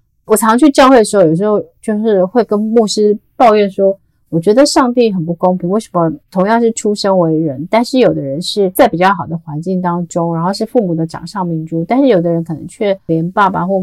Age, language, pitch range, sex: 30-49, Chinese, 170-225 Hz, female